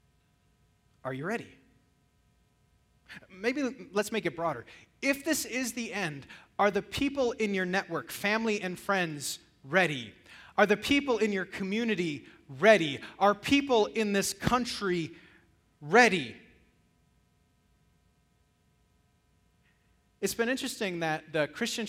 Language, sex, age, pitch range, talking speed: English, male, 30-49, 155-225 Hz, 115 wpm